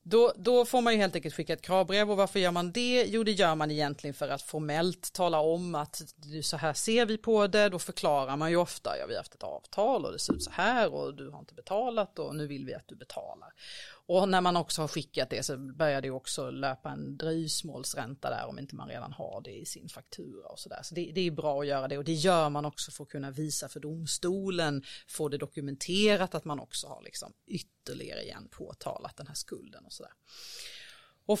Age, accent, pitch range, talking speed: 30-49, native, 150-190 Hz, 240 wpm